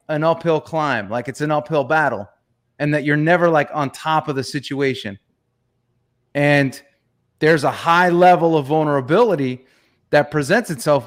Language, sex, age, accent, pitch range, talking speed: English, male, 30-49, American, 125-165 Hz, 150 wpm